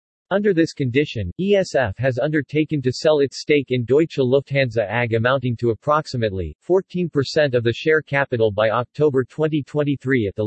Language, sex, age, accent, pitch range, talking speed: English, male, 50-69, American, 120-150 Hz, 155 wpm